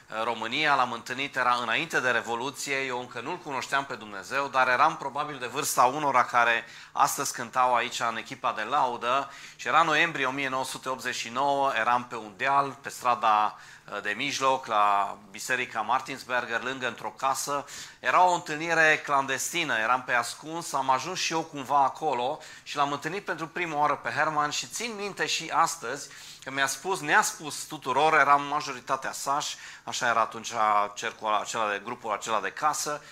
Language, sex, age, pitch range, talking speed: Romanian, male, 30-49, 130-150 Hz, 165 wpm